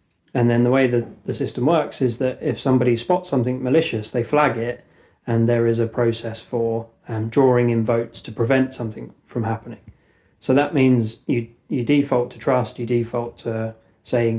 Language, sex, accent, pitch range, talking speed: English, male, British, 115-125 Hz, 190 wpm